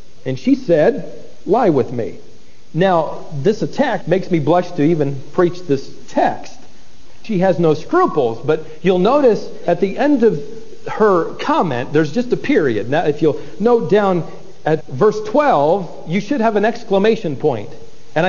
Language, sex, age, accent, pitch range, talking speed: English, male, 40-59, American, 155-225 Hz, 160 wpm